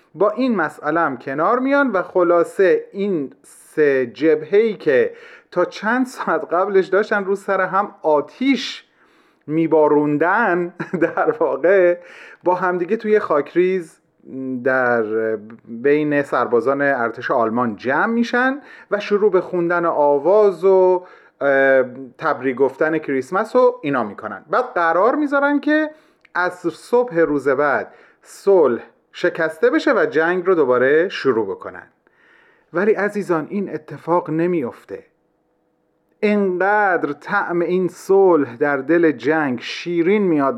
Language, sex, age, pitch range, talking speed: Persian, male, 30-49, 155-225 Hz, 115 wpm